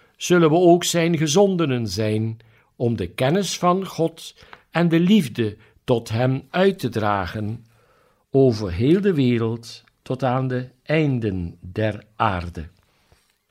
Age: 60-79